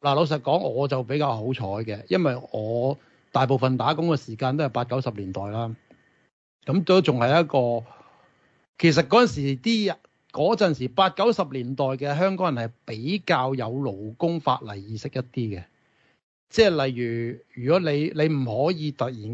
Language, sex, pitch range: Chinese, male, 120-155 Hz